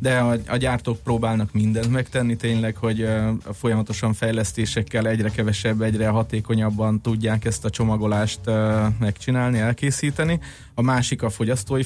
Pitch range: 105-115 Hz